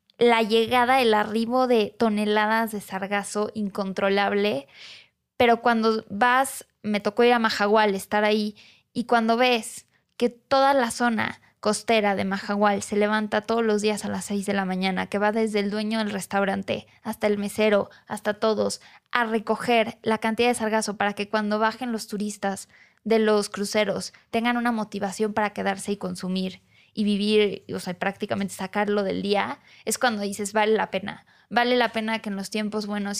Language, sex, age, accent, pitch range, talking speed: Spanish, female, 20-39, Mexican, 205-225 Hz, 175 wpm